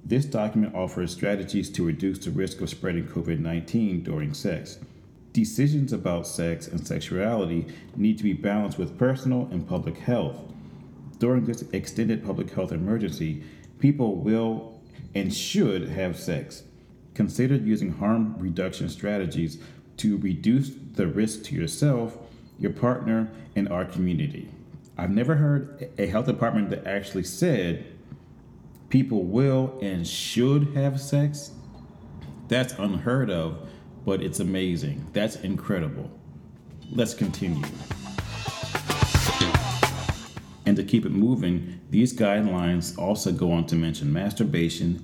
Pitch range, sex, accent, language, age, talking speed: 90-125 Hz, male, American, English, 30-49, 125 wpm